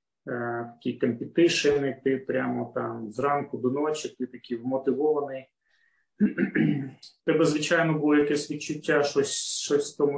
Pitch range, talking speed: 130-165 Hz, 125 wpm